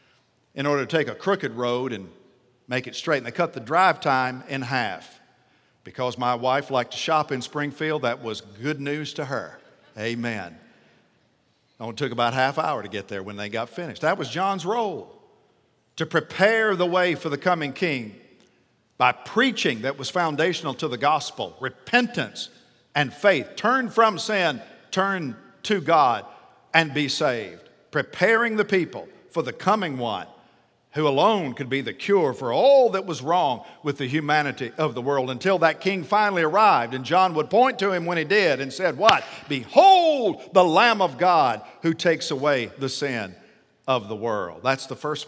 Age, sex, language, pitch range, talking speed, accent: 50-69, male, English, 125-180 Hz, 180 wpm, American